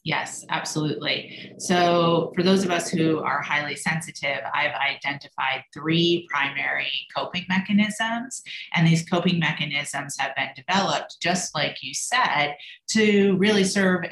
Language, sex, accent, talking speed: English, female, American, 130 wpm